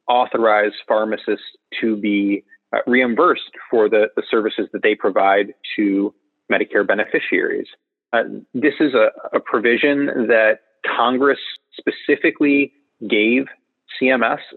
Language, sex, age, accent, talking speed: English, male, 30-49, American, 110 wpm